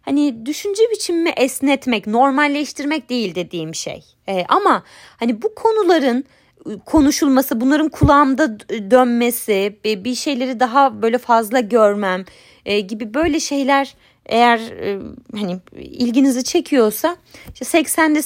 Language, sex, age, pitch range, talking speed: Turkish, female, 30-49, 220-295 Hz, 115 wpm